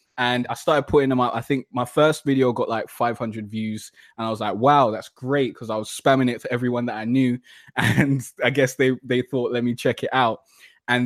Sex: male